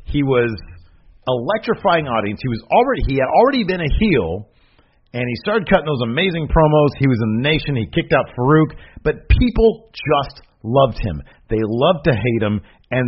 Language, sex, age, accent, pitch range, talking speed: English, male, 40-59, American, 105-155 Hz, 185 wpm